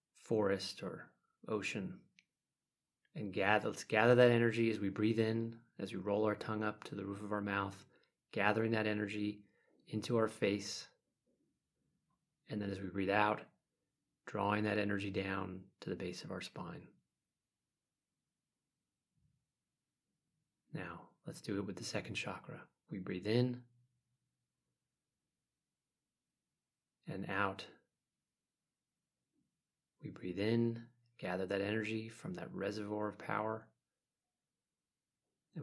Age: 30-49